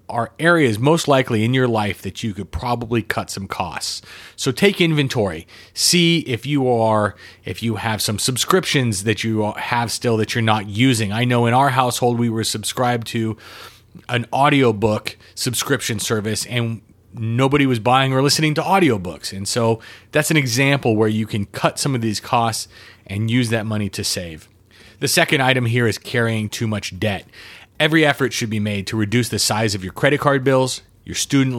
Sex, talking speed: male, 190 wpm